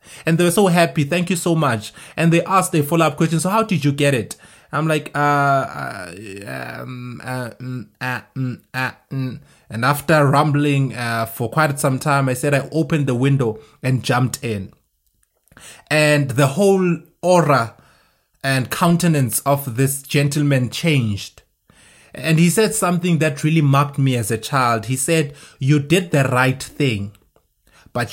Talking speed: 165 wpm